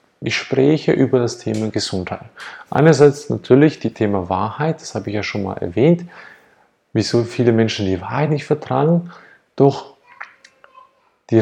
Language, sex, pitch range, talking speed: German, male, 110-150 Hz, 140 wpm